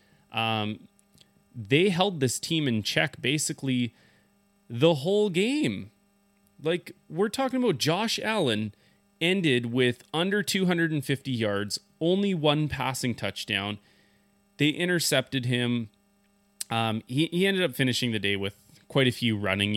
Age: 30-49